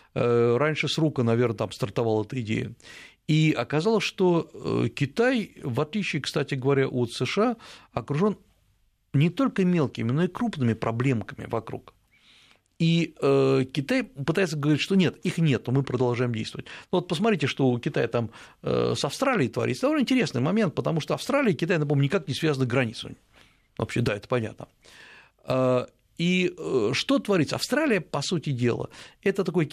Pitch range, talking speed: 120-170 Hz, 145 wpm